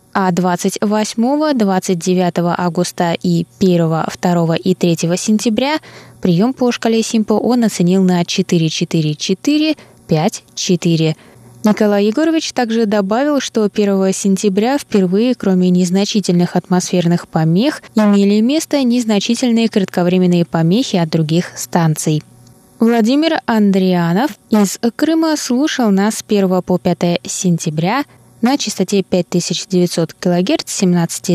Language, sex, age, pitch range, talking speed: Russian, female, 20-39, 175-230 Hz, 110 wpm